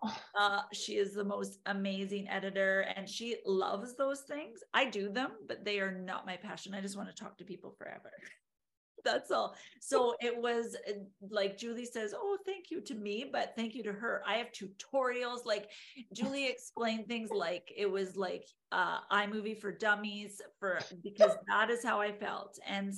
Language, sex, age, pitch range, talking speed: English, female, 40-59, 195-225 Hz, 185 wpm